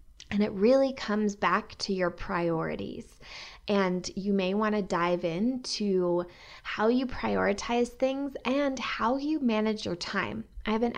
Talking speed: 150 wpm